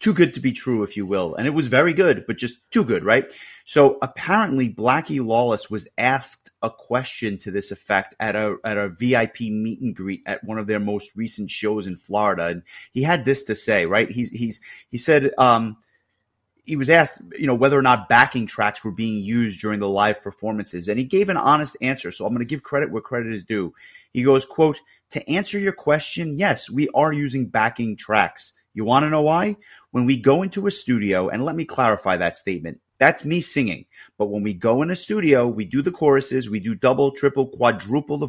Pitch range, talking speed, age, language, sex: 105-140 Hz, 225 wpm, 30-49, English, male